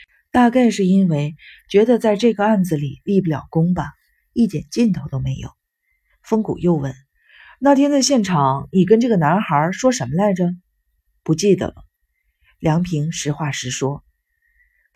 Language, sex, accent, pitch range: Chinese, female, native, 155-220 Hz